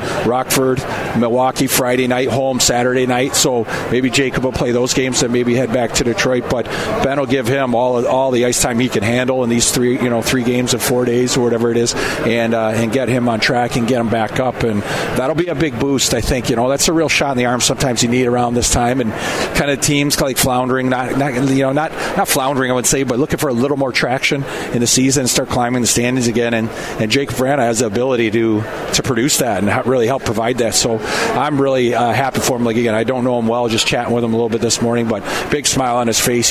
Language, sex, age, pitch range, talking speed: English, male, 40-59, 120-135 Hz, 260 wpm